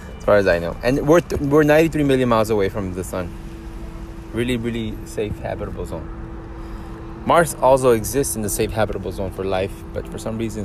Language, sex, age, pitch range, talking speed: English, male, 20-39, 90-110 Hz, 195 wpm